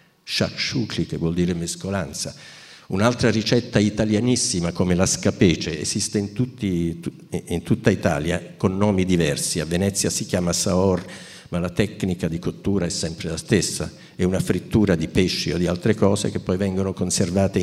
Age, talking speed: 50-69, 155 wpm